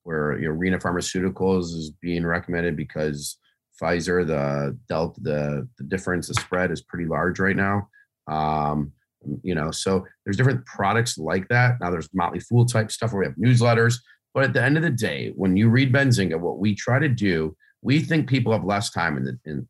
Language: English